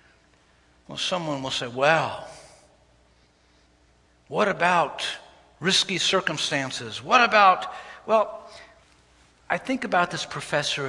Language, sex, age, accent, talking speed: English, male, 60-79, American, 95 wpm